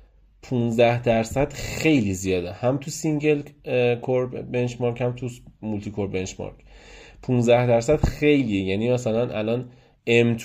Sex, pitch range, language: male, 105-135 Hz, Persian